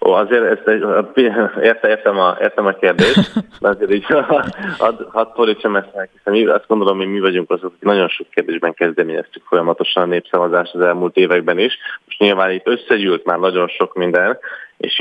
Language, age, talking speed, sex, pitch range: Hungarian, 20-39, 170 wpm, male, 90-110 Hz